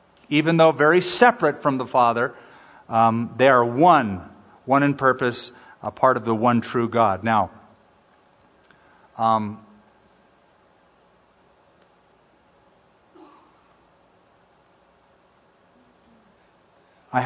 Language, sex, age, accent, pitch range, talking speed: English, male, 50-69, American, 125-165 Hz, 85 wpm